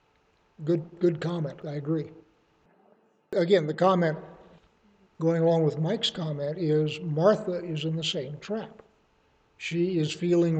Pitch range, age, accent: 155-190 Hz, 60-79, American